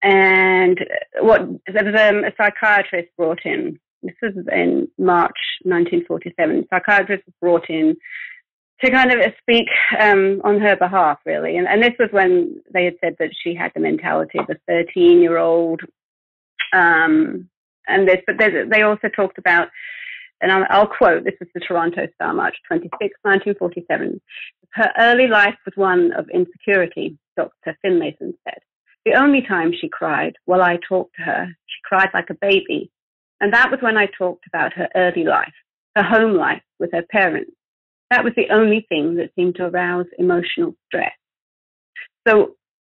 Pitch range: 180-250 Hz